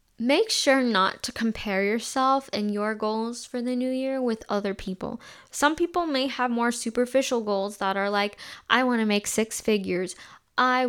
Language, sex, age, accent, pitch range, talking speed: English, female, 10-29, American, 200-240 Hz, 180 wpm